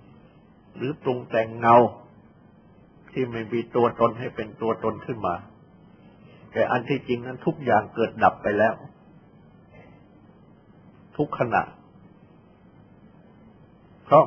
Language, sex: Thai, male